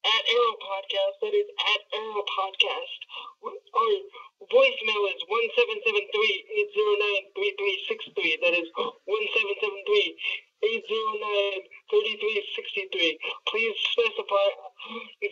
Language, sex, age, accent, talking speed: English, male, 20-39, American, 55 wpm